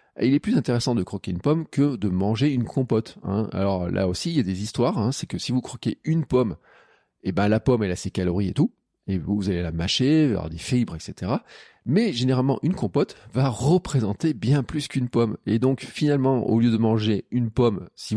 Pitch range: 105-135 Hz